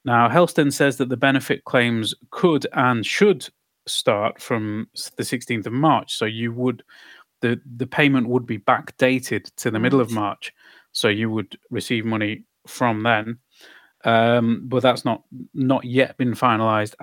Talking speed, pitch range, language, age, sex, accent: 160 wpm, 115-135 Hz, Finnish, 30-49, male, British